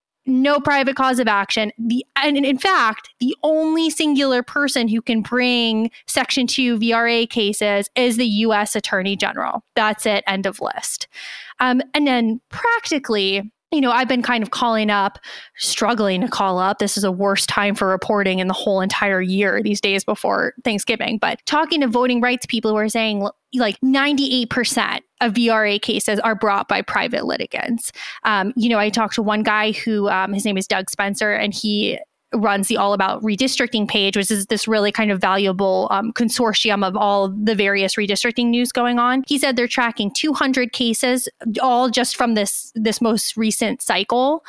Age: 20-39